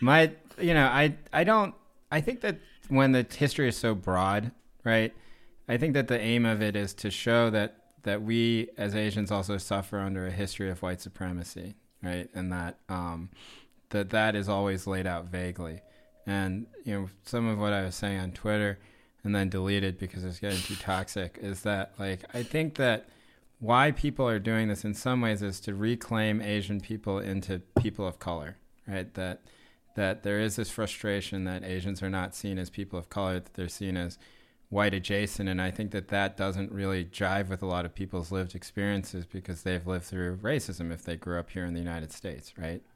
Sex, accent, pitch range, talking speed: male, American, 90-105 Hz, 200 wpm